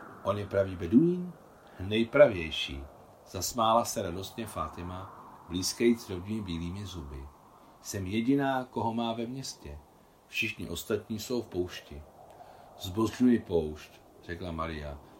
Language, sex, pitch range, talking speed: Czech, male, 85-115 Hz, 110 wpm